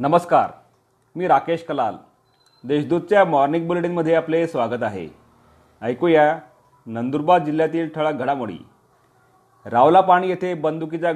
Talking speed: 95 wpm